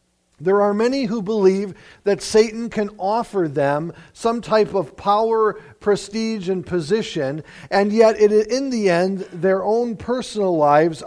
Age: 50-69